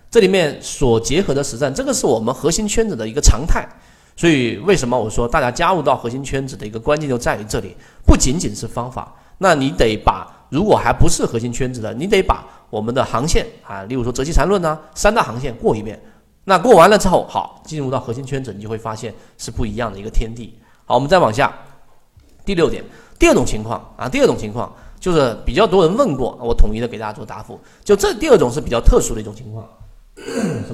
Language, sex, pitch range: Chinese, male, 115-155 Hz